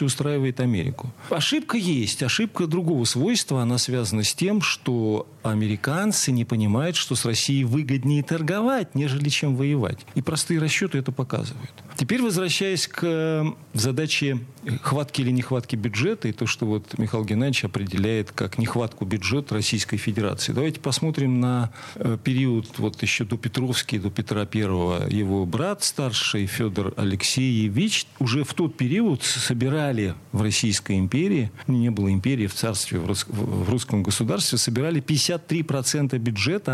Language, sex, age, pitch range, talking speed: Russian, male, 40-59, 115-155 Hz, 140 wpm